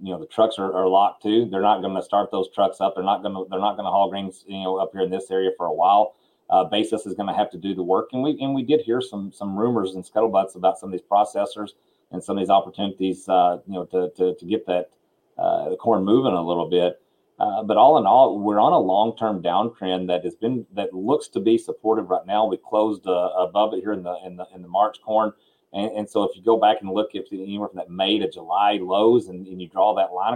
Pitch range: 95-110 Hz